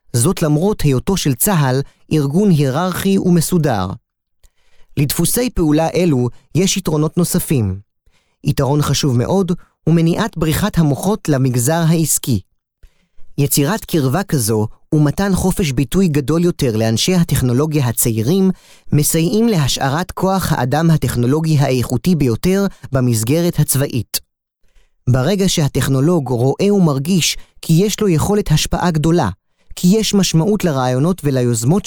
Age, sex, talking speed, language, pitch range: 30-49, male, 105 wpm, Hebrew, 135-185 Hz